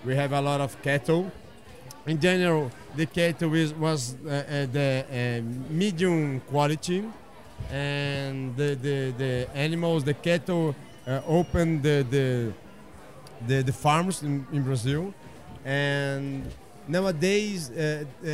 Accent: Brazilian